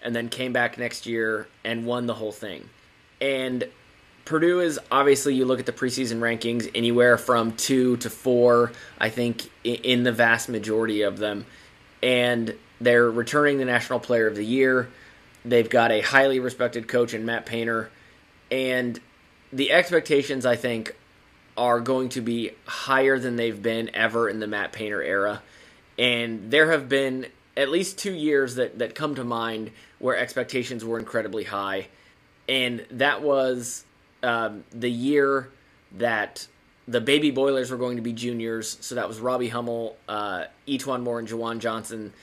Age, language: 20-39, English